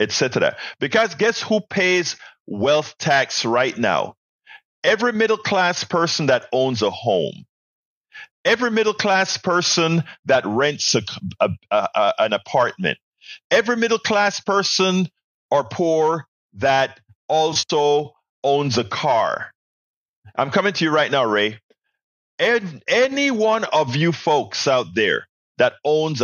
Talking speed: 130 wpm